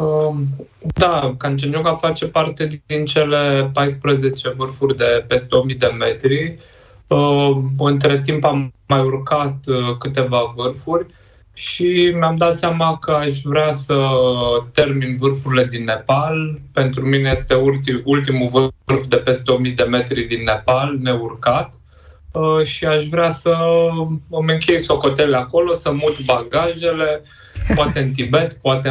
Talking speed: 125 wpm